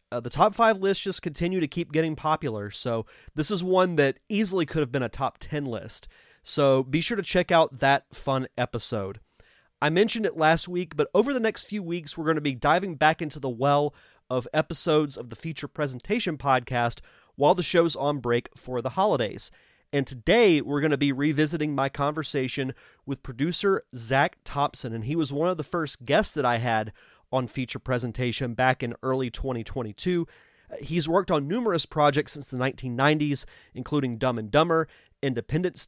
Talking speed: 185 wpm